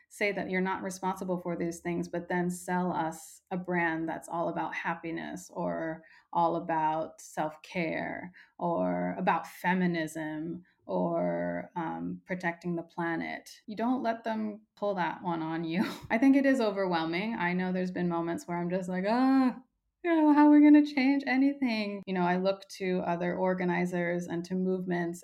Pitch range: 170-200 Hz